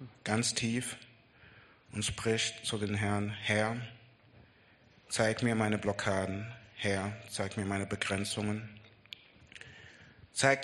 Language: German